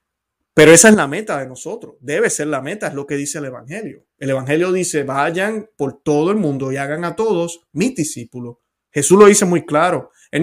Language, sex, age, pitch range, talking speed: Spanish, male, 30-49, 140-200 Hz, 215 wpm